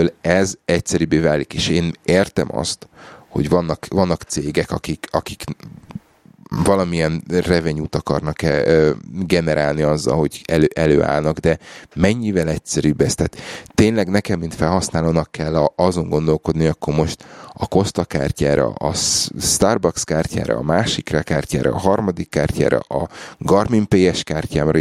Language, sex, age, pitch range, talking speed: Hungarian, male, 30-49, 80-95 Hz, 125 wpm